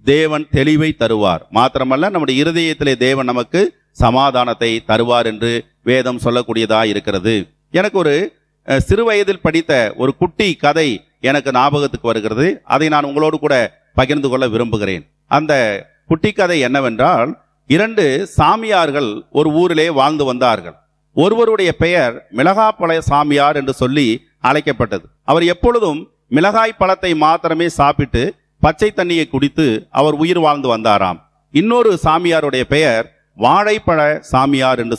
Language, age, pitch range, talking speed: Tamil, 40-59, 130-175 Hz, 115 wpm